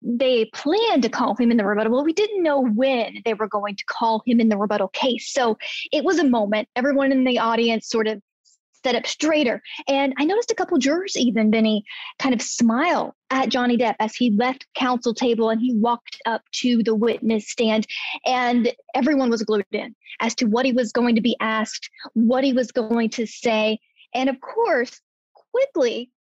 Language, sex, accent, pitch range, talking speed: English, female, American, 225-275 Hz, 200 wpm